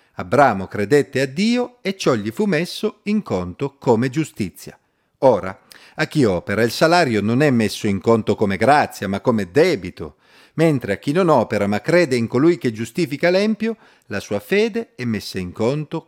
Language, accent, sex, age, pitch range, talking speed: Italian, native, male, 40-59, 110-160 Hz, 180 wpm